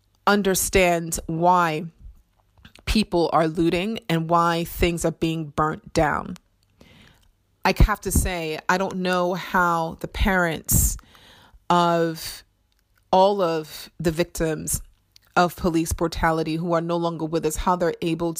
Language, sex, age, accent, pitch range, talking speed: English, female, 30-49, American, 160-185 Hz, 125 wpm